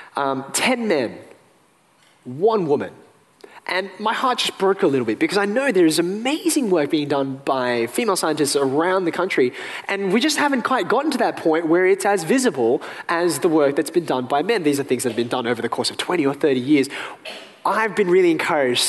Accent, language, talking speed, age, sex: Australian, English, 215 wpm, 20-39, male